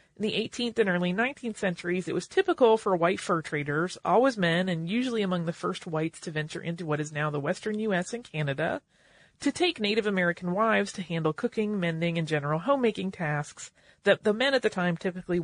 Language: English